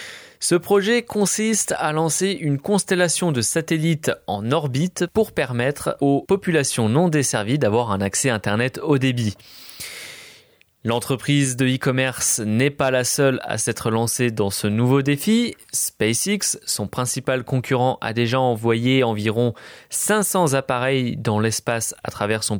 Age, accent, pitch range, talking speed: 20-39, French, 115-155 Hz, 140 wpm